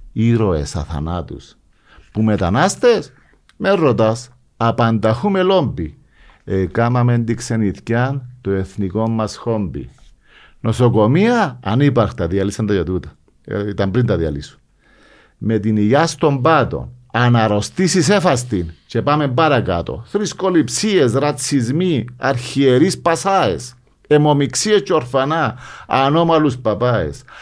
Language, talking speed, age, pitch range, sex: Greek, 100 wpm, 50-69, 105-140 Hz, male